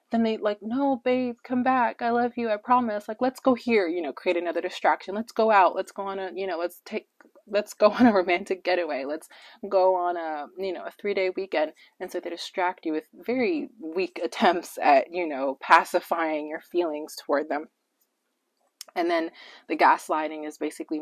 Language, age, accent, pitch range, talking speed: English, 20-39, American, 165-255 Hz, 200 wpm